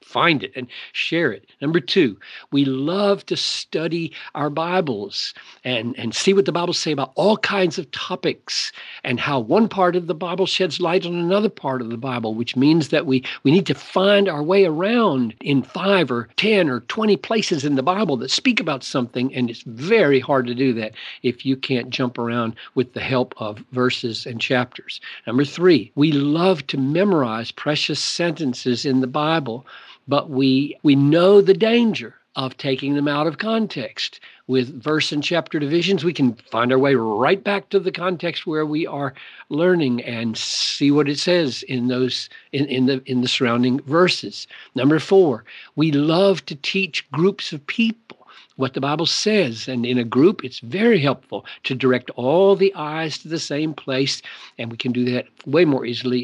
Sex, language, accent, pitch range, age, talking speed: male, English, American, 130-185 Hz, 50-69, 190 wpm